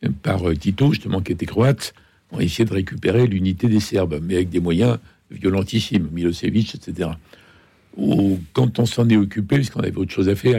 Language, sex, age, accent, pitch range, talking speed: French, male, 60-79, French, 95-115 Hz, 180 wpm